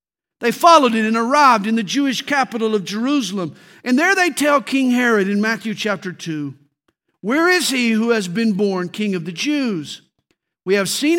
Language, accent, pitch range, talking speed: English, American, 185-245 Hz, 190 wpm